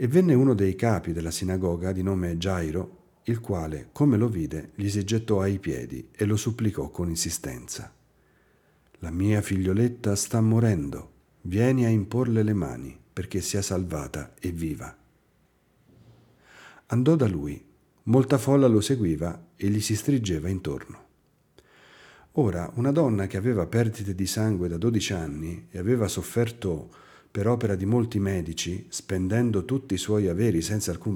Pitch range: 85-115 Hz